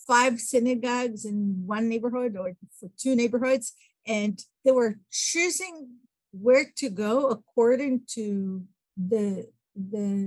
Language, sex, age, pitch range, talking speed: English, female, 50-69, 200-245 Hz, 115 wpm